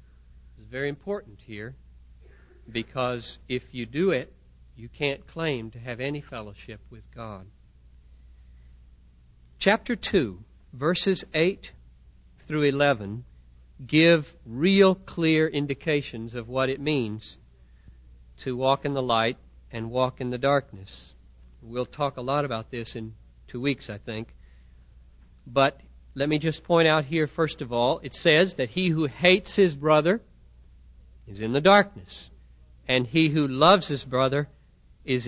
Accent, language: American, English